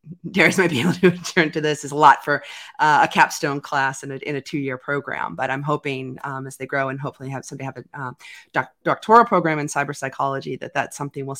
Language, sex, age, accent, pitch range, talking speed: English, female, 30-49, American, 140-170 Hz, 240 wpm